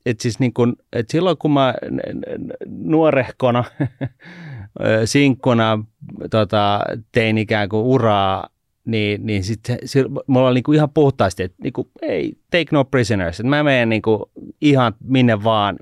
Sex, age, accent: male, 30-49, native